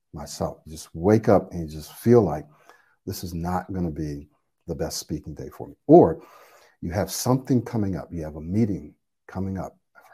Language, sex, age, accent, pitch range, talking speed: English, male, 60-79, American, 80-100 Hz, 205 wpm